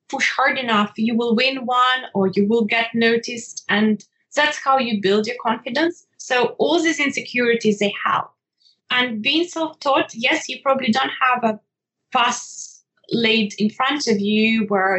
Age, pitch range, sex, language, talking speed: 20-39, 205-255 Hz, female, English, 165 wpm